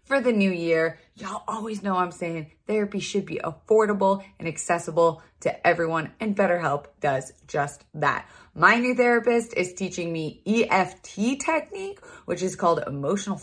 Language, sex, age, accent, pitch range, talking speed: English, female, 30-49, American, 175-255 Hz, 155 wpm